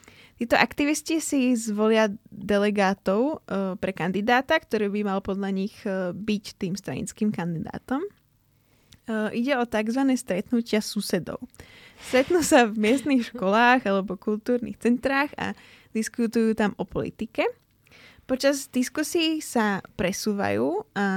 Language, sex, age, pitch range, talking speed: Slovak, female, 20-39, 195-240 Hz, 110 wpm